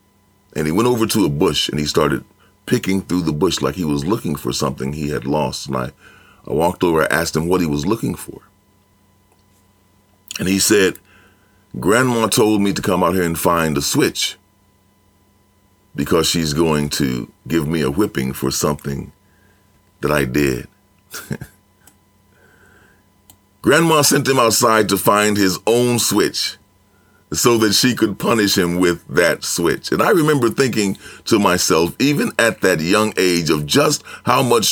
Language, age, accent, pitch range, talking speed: English, 40-59, American, 90-110 Hz, 165 wpm